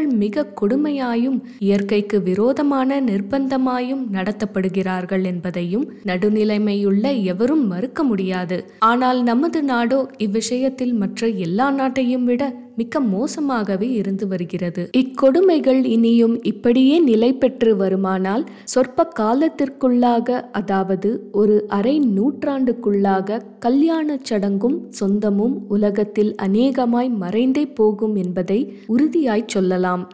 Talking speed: 85 wpm